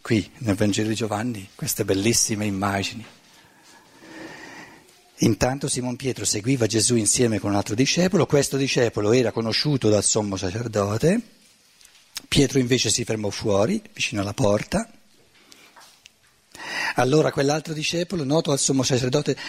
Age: 50-69